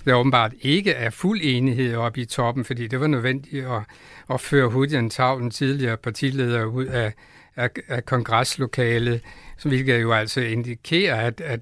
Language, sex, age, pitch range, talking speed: Danish, male, 60-79, 120-140 Hz, 160 wpm